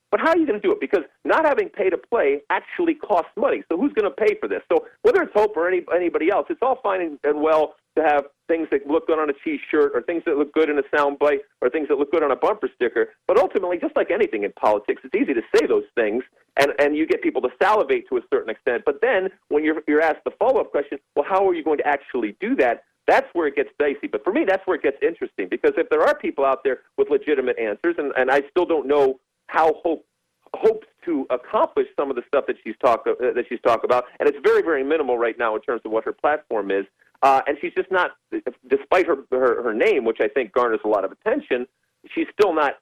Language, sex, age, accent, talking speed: English, male, 50-69, American, 260 wpm